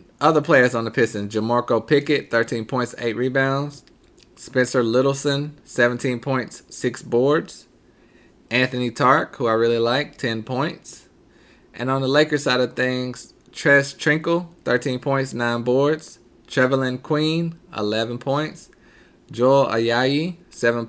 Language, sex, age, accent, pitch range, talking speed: English, male, 20-39, American, 110-135 Hz, 130 wpm